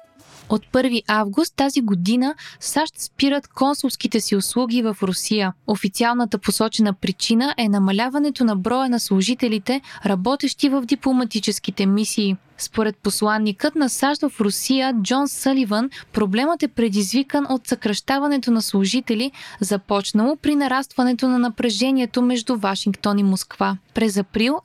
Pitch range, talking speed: 210-265 Hz, 125 wpm